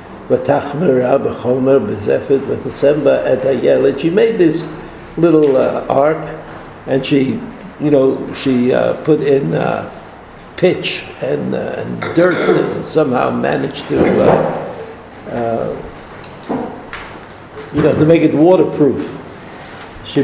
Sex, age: male, 70-89